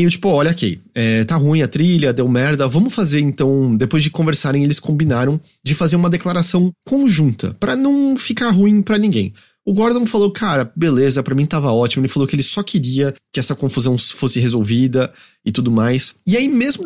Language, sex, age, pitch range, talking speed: English, male, 30-49, 120-195 Hz, 200 wpm